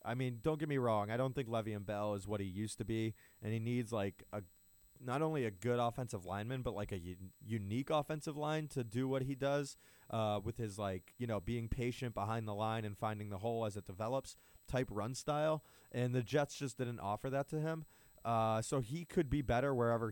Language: English